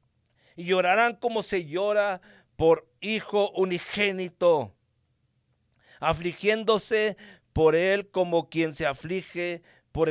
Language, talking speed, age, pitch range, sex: English, 95 wpm, 50-69, 145-185 Hz, male